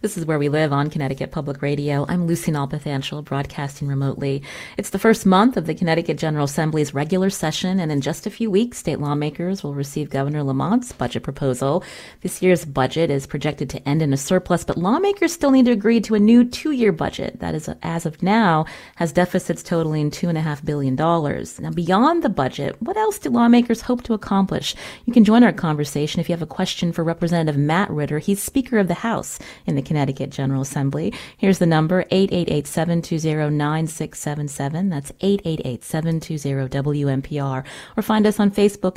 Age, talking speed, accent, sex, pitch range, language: 30-49, 190 wpm, American, female, 150-185 Hz, English